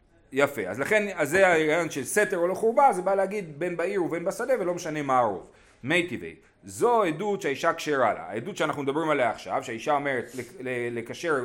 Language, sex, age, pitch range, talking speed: Hebrew, male, 30-49, 130-190 Hz, 190 wpm